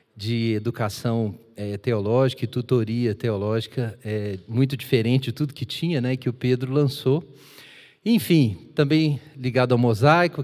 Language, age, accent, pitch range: Portuguese, 40-59, Brazilian, 110-140 Hz